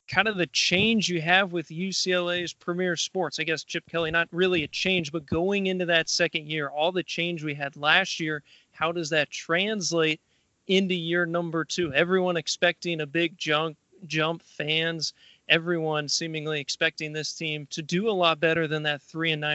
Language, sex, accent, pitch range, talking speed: English, male, American, 160-185 Hz, 180 wpm